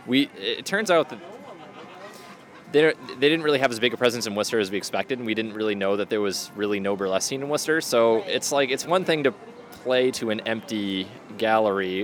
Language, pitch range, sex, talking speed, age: English, 100-130 Hz, male, 225 wpm, 20-39